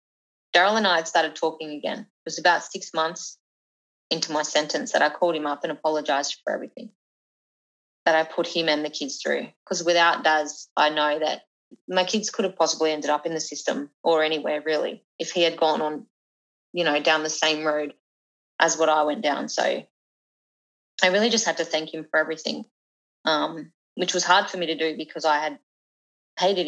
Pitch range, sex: 150-170 Hz, female